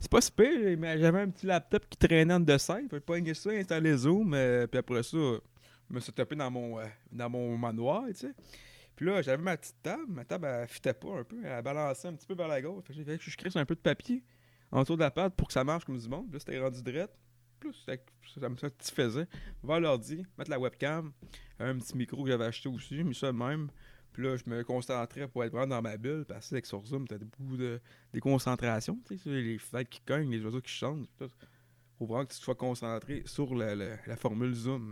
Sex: male